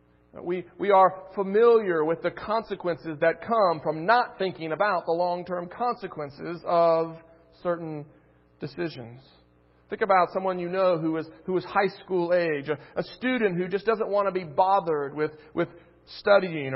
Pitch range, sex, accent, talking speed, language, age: 160-215 Hz, male, American, 155 wpm, English, 40-59